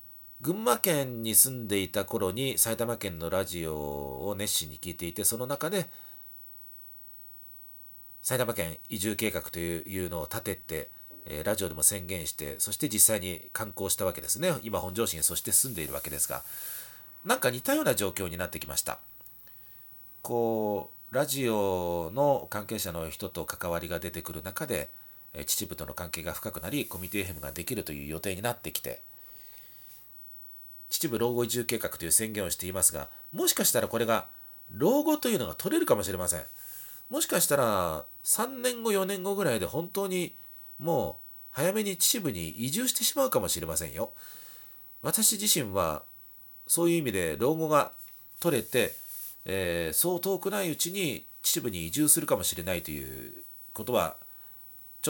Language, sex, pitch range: Japanese, male, 90-125 Hz